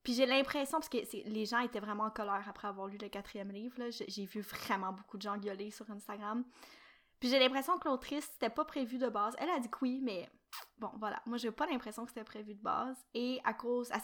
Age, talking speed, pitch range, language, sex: 10-29, 255 wpm, 210-250 Hz, French, female